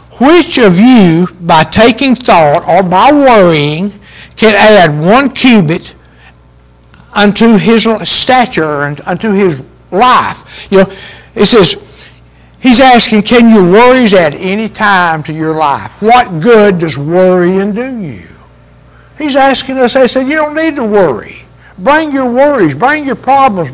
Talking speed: 145 wpm